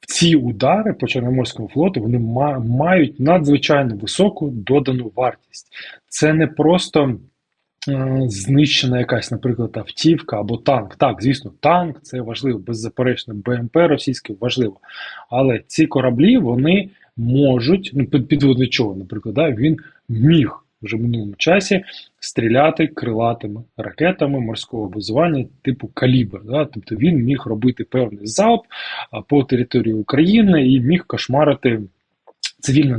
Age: 20-39